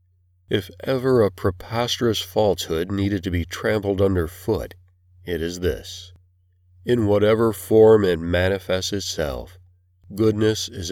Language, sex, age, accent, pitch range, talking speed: English, male, 40-59, American, 90-105 Hz, 115 wpm